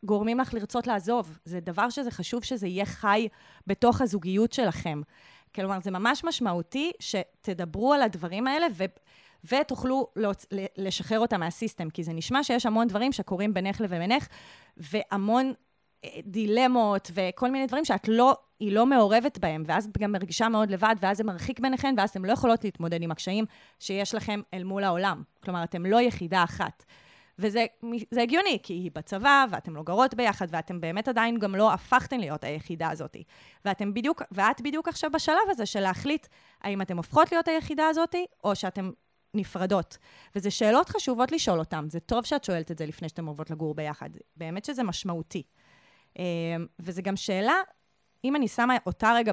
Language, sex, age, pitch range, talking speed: Hebrew, female, 30-49, 185-250 Hz, 165 wpm